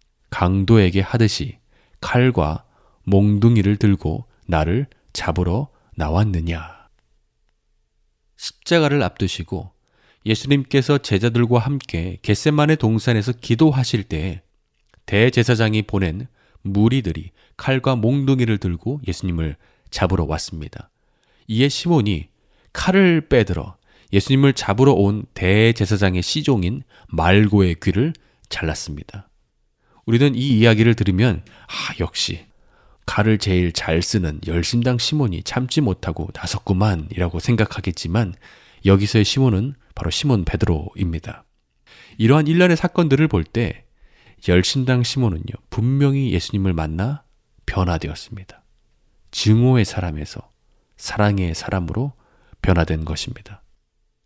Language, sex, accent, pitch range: Korean, male, native, 90-125 Hz